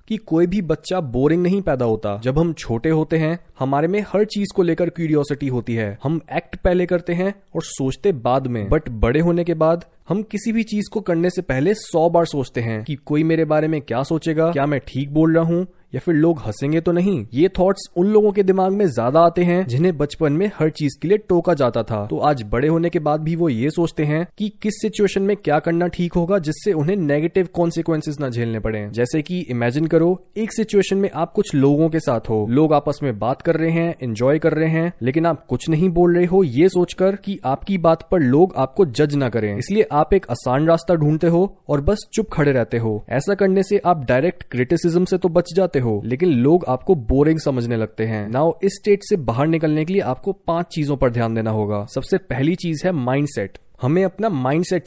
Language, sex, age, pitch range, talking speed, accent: Hindi, male, 20-39, 135-180 Hz, 230 wpm, native